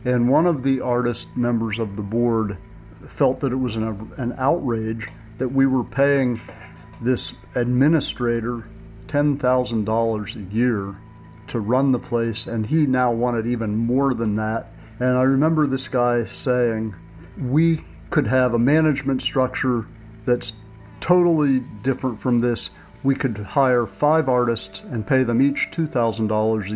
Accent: American